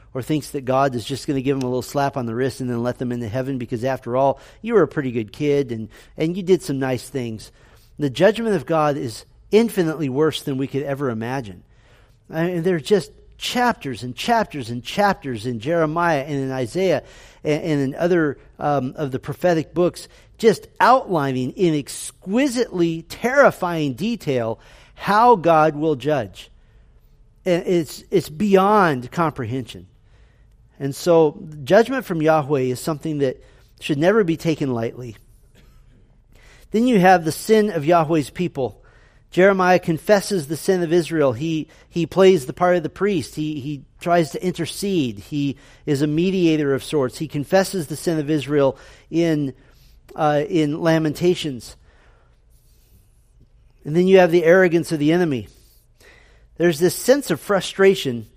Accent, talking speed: American, 165 wpm